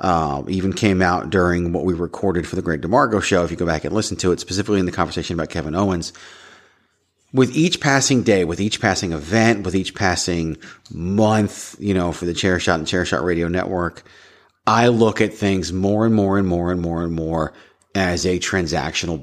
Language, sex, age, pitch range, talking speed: English, male, 40-59, 85-105 Hz, 210 wpm